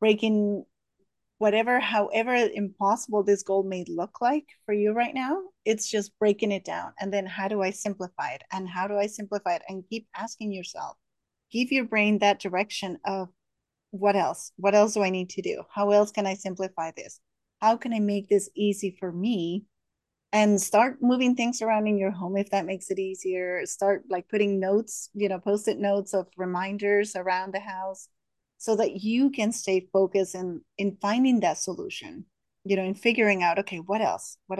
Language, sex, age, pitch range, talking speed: English, female, 30-49, 190-220 Hz, 190 wpm